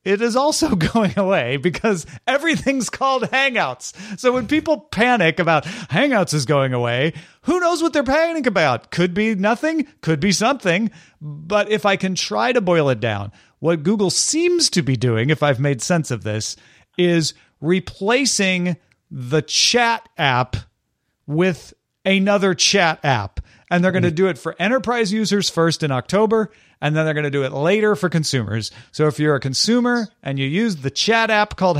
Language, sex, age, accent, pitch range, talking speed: English, male, 40-59, American, 140-210 Hz, 175 wpm